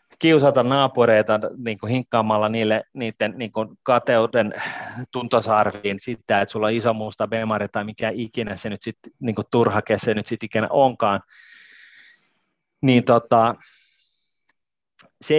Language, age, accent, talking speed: Finnish, 30-49, native, 120 wpm